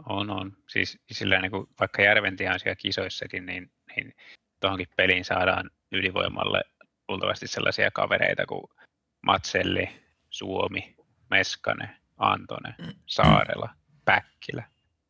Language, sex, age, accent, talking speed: Finnish, male, 20-39, native, 90 wpm